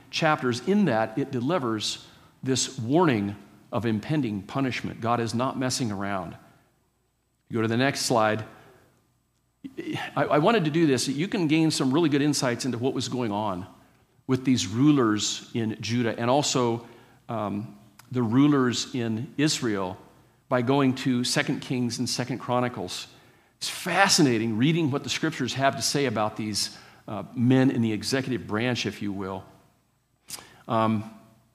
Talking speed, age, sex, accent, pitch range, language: 150 wpm, 50-69, male, American, 110-135 Hz, English